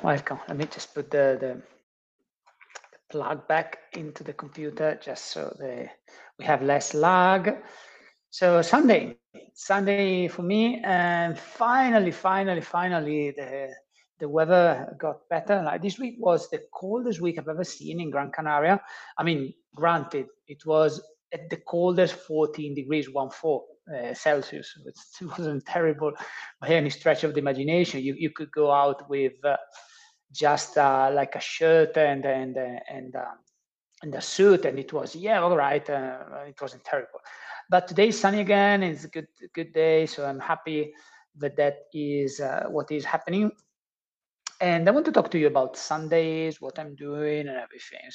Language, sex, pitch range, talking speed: English, male, 145-185 Hz, 165 wpm